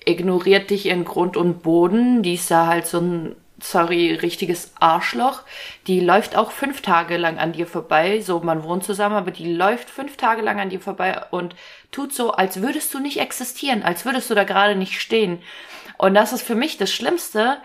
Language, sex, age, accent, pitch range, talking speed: German, female, 20-39, German, 180-220 Hz, 200 wpm